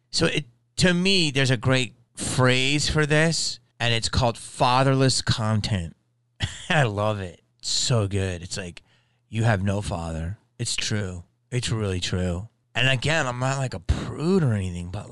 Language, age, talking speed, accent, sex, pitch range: English, 30-49, 165 wpm, American, male, 90-120 Hz